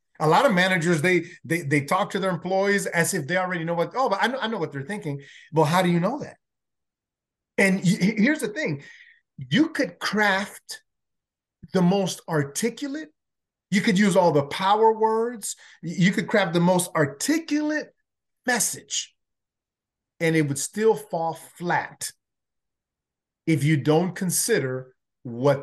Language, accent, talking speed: English, American, 155 wpm